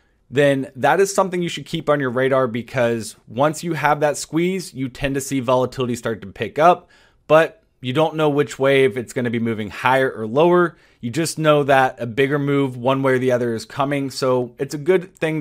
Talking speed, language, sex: 230 wpm, English, male